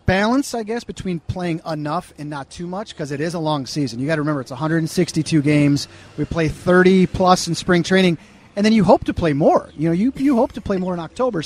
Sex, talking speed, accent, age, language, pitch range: male, 245 wpm, American, 40-59, English, 140-180 Hz